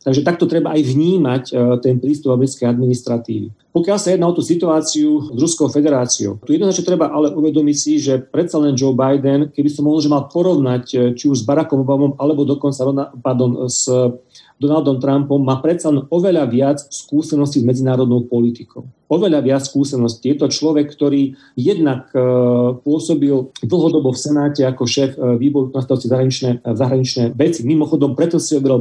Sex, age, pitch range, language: male, 40-59, 130-155 Hz, Slovak